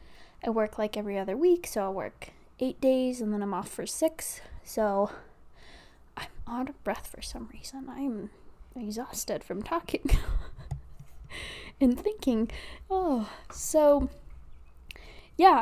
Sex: female